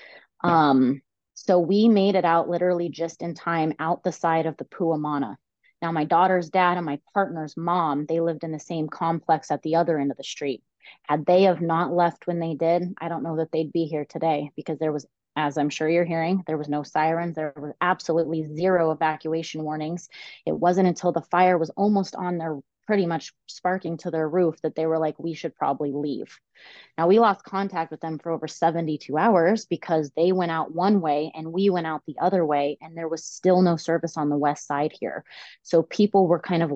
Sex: female